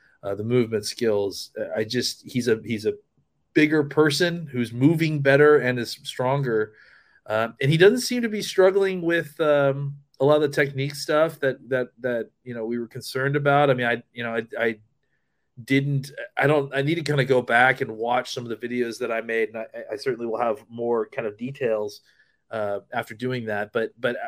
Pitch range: 110-135 Hz